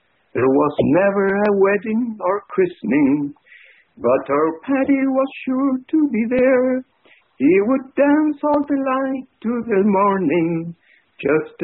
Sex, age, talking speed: male, 60-79, 125 wpm